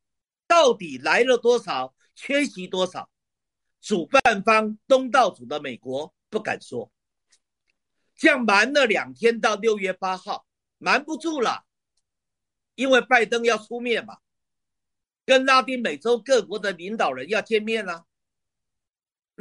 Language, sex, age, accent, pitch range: Chinese, male, 50-69, native, 195-255 Hz